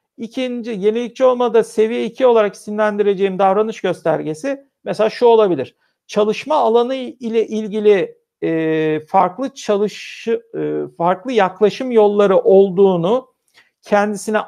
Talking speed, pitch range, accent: 100 wpm, 200-245 Hz, native